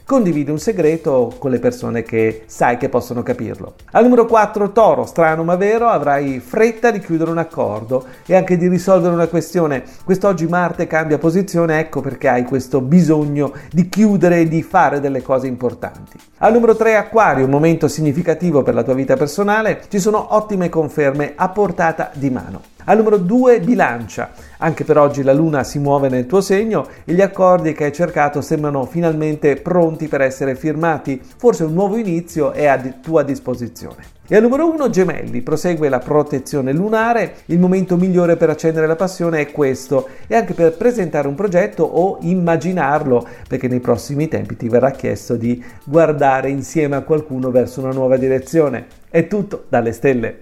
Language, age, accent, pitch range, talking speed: Italian, 40-59, native, 135-180 Hz, 175 wpm